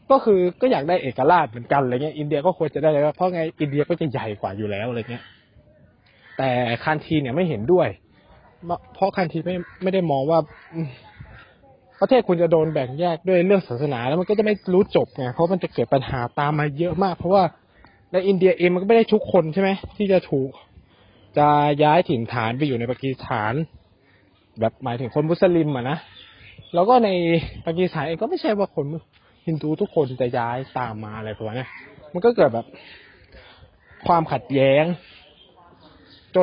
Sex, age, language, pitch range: male, 20-39, Thai, 120-170 Hz